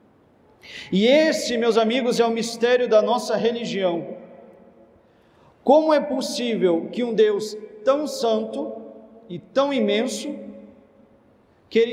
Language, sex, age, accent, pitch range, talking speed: Portuguese, male, 40-59, Brazilian, 190-250 Hz, 110 wpm